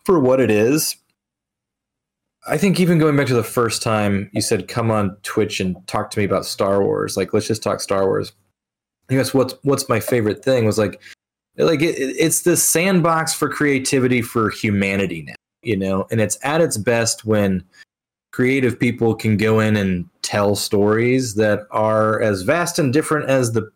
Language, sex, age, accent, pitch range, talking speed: English, male, 20-39, American, 100-130 Hz, 185 wpm